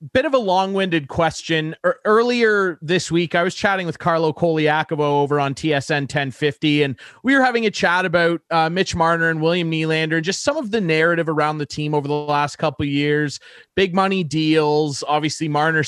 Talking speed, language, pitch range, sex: 190 wpm, English, 150-195 Hz, male